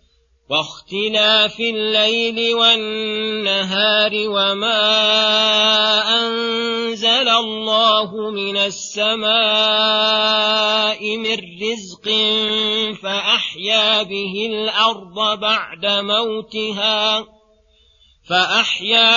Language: Arabic